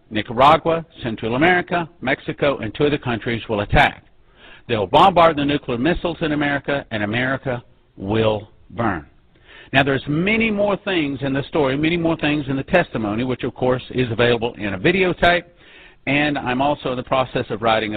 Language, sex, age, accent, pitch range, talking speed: English, male, 50-69, American, 120-160 Hz, 170 wpm